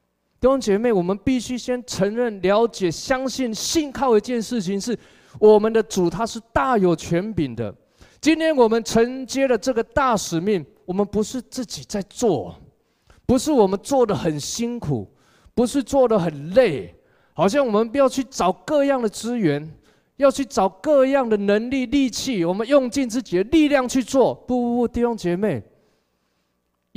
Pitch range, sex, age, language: 155-240 Hz, male, 20-39, Chinese